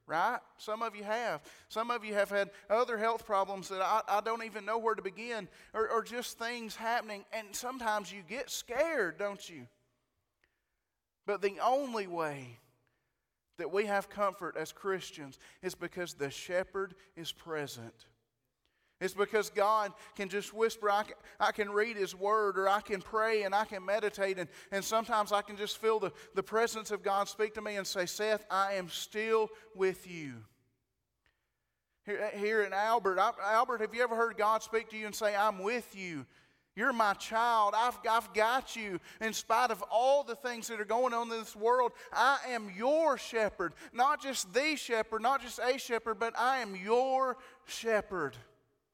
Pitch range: 195-225 Hz